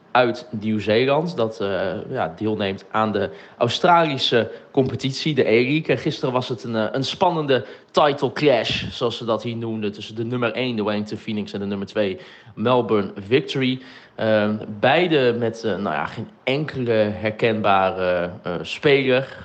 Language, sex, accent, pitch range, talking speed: Dutch, male, Dutch, 105-130 Hz, 150 wpm